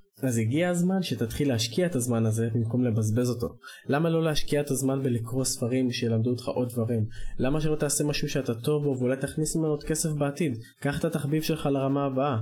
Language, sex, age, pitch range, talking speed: Hebrew, male, 20-39, 120-145 Hz, 200 wpm